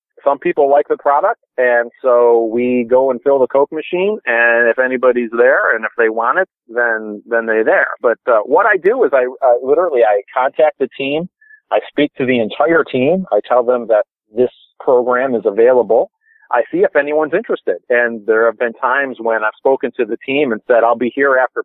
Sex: male